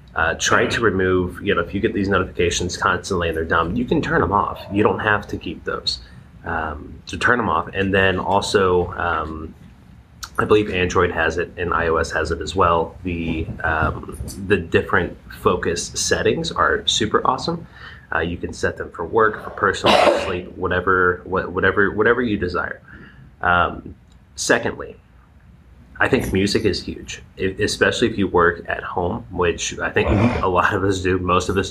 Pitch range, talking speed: 85-95 Hz, 180 wpm